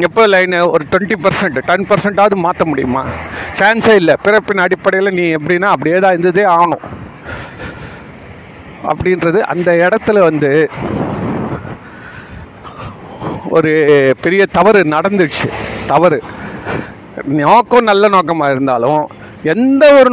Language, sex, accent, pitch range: Tamil, male, native, 150-205 Hz